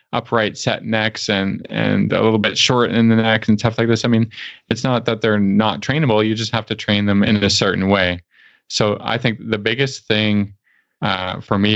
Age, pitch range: 20-39, 95-115 Hz